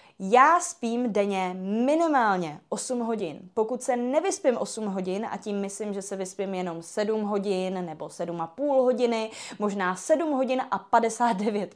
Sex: female